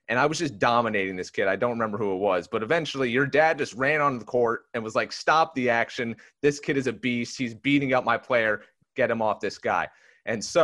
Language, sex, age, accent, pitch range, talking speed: English, male, 30-49, American, 105-130 Hz, 255 wpm